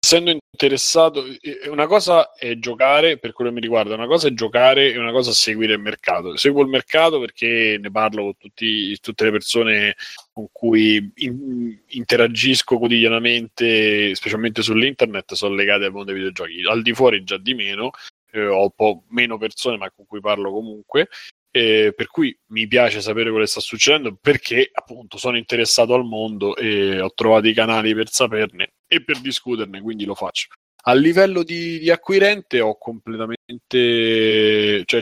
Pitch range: 110-130 Hz